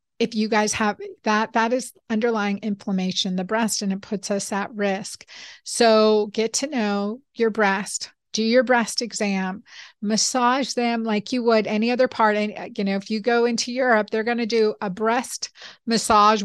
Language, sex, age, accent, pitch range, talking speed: English, female, 50-69, American, 195-225 Hz, 180 wpm